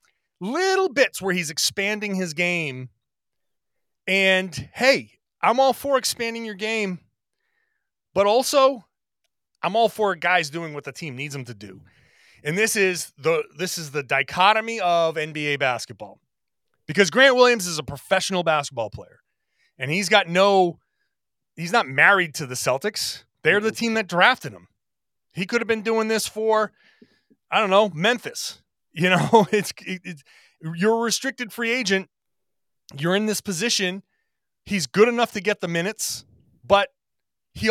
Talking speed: 150 wpm